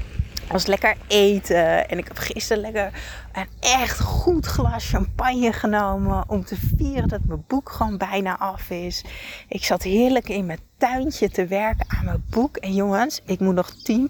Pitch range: 185-245 Hz